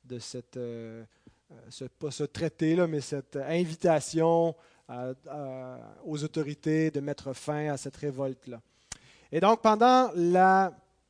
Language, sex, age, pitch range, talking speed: French, male, 30-49, 140-170 Hz, 140 wpm